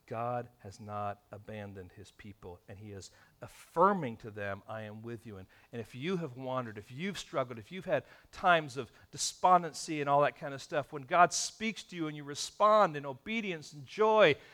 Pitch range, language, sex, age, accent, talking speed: 115-185 Hz, English, male, 50-69, American, 200 wpm